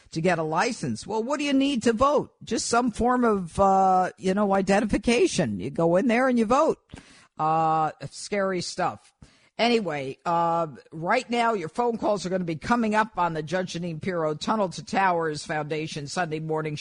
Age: 50-69